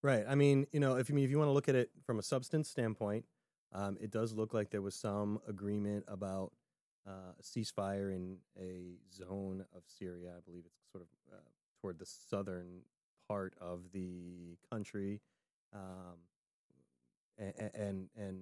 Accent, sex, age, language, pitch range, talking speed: American, male, 30-49, English, 95-115 Hz, 175 wpm